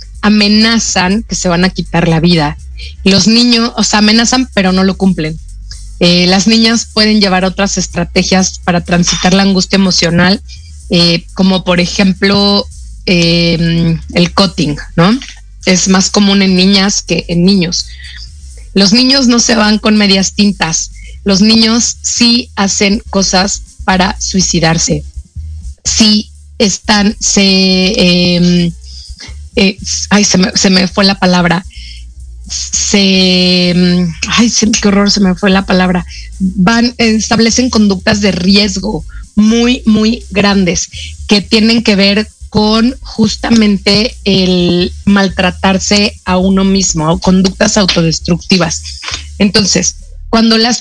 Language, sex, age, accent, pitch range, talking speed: Spanish, female, 30-49, Mexican, 170-210 Hz, 125 wpm